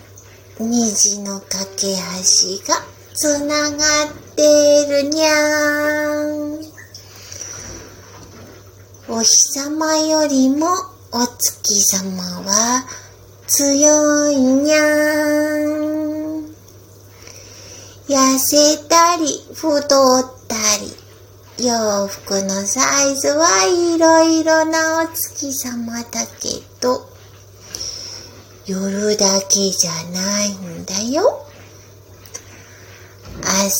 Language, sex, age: Japanese, female, 30-49